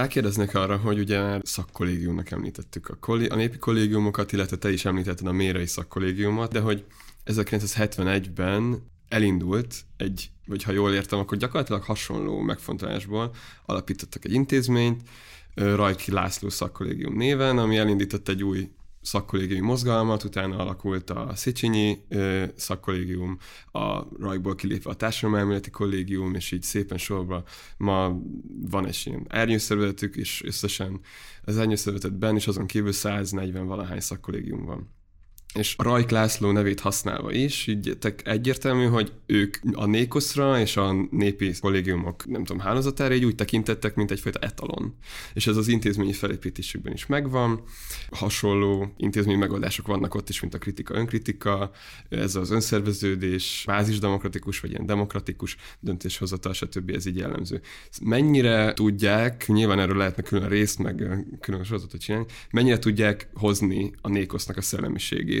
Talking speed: 135 wpm